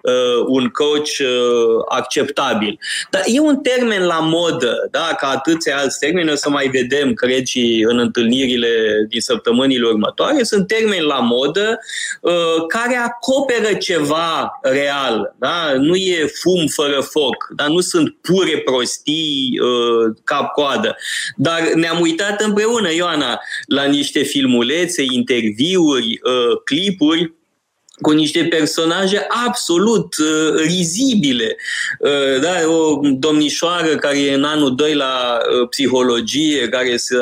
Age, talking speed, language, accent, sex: 20-39, 120 wpm, Romanian, native, male